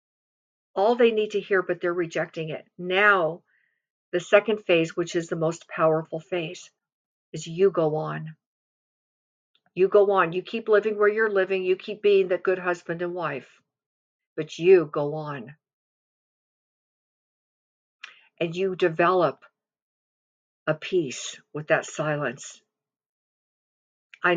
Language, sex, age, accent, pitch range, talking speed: English, female, 50-69, American, 160-200 Hz, 130 wpm